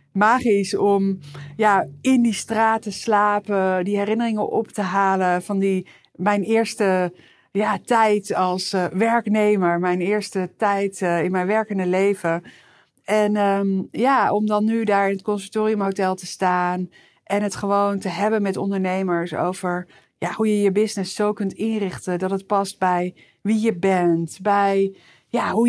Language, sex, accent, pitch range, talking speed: Dutch, female, Dutch, 185-220 Hz, 145 wpm